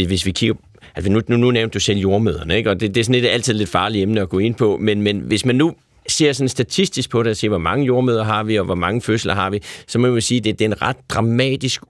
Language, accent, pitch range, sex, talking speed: Danish, native, 95-120 Hz, male, 305 wpm